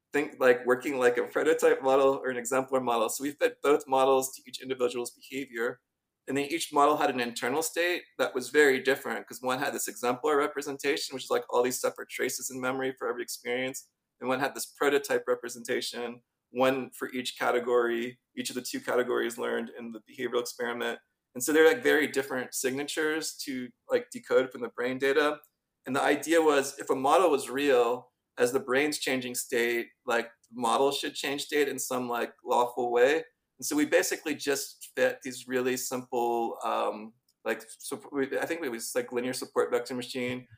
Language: English